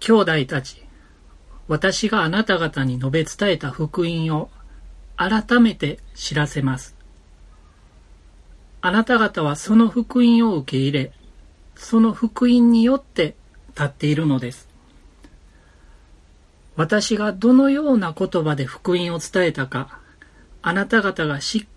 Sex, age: male, 40-59